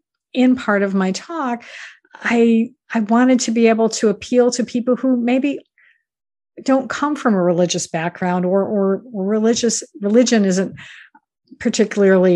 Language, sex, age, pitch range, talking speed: English, female, 50-69, 180-235 Hz, 140 wpm